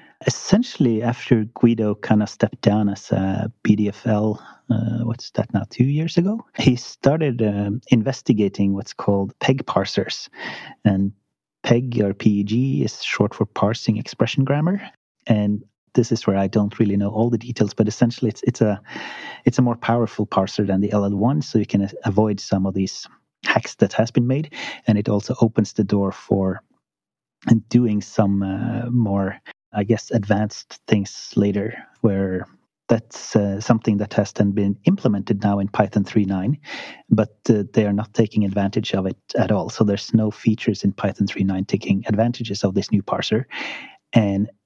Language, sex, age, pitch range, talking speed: English, male, 30-49, 100-115 Hz, 170 wpm